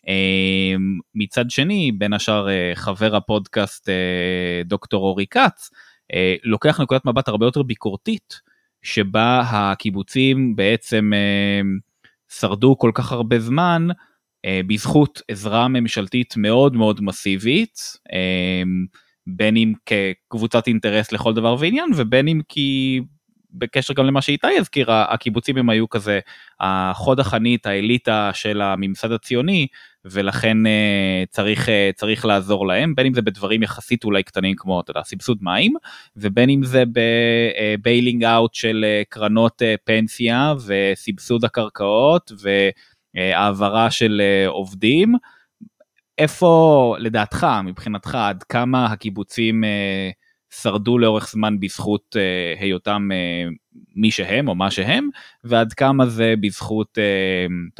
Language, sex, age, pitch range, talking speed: Hebrew, male, 20-39, 100-125 Hz, 120 wpm